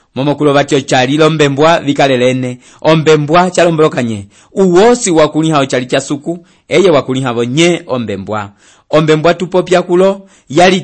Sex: male